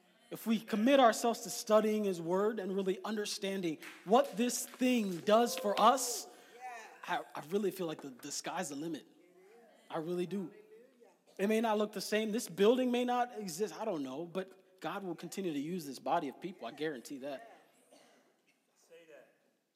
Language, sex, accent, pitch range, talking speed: English, male, American, 160-210 Hz, 175 wpm